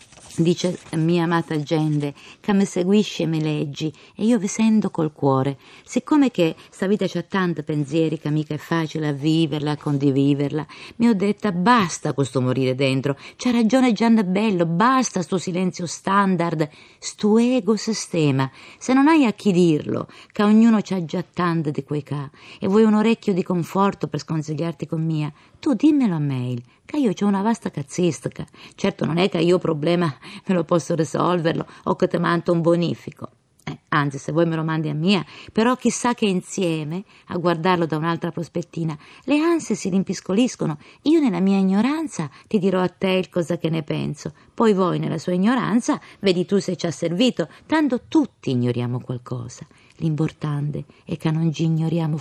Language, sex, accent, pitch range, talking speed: Italian, female, native, 155-200 Hz, 180 wpm